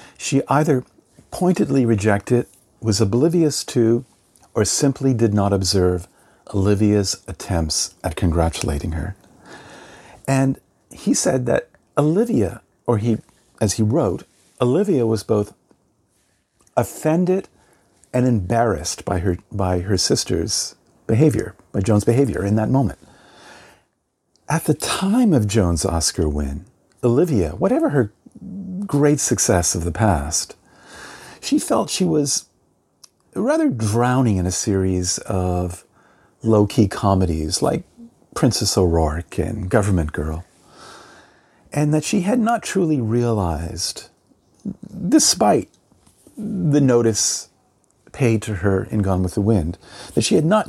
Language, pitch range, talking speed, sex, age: English, 95-135 Hz, 120 wpm, male, 50-69